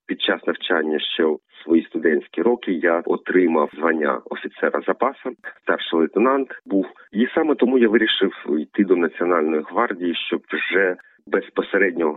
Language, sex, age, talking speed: Ukrainian, male, 40-59, 140 wpm